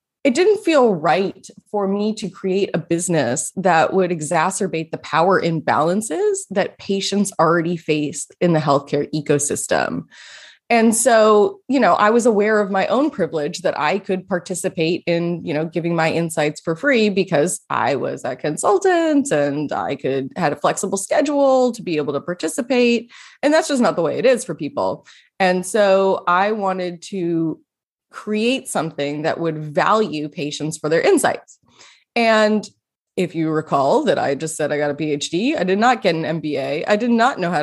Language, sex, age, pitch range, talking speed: English, female, 20-39, 160-220 Hz, 175 wpm